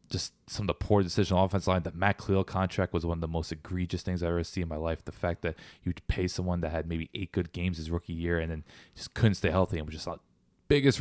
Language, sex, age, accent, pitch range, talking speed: English, male, 20-39, American, 85-105 Hz, 285 wpm